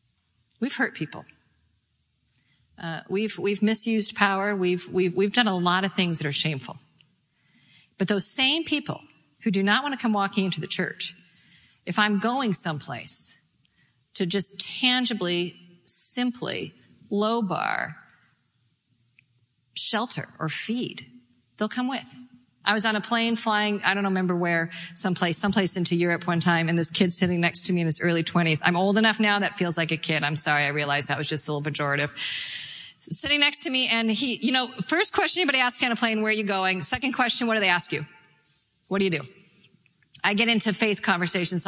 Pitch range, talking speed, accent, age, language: 160-220 Hz, 190 wpm, American, 50-69, English